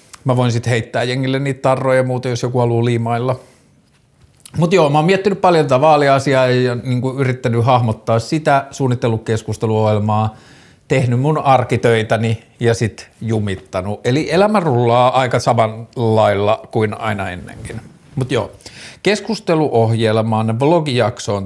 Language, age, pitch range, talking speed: Finnish, 50-69, 115-135 Hz, 130 wpm